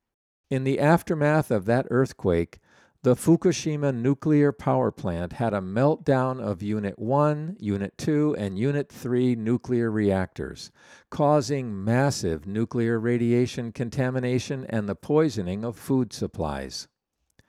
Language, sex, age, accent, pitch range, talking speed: English, male, 50-69, American, 100-135 Hz, 120 wpm